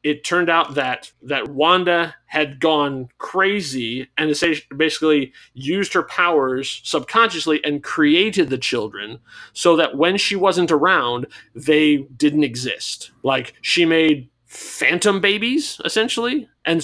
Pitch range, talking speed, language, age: 135-170 Hz, 125 wpm, English, 30-49